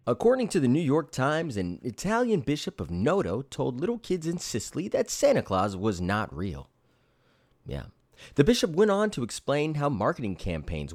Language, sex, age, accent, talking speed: English, male, 30-49, American, 175 wpm